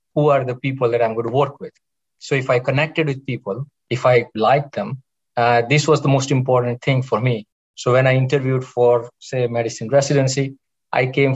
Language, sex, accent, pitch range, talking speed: English, male, Indian, 115-140 Hz, 205 wpm